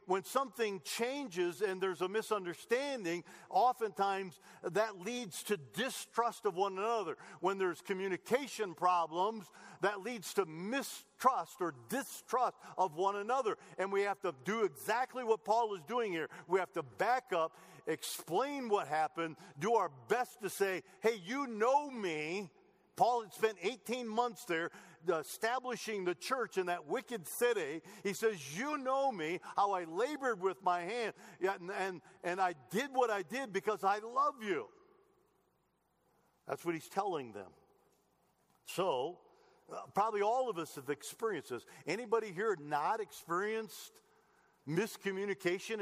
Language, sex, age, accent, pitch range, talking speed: English, male, 50-69, American, 185-250 Hz, 145 wpm